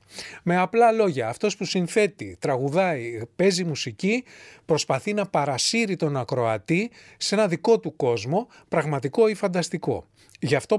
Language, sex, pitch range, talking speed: English, male, 130-200 Hz, 135 wpm